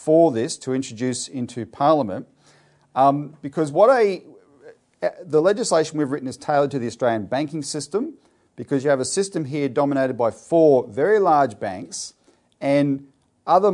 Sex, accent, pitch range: male, Australian, 125-155 Hz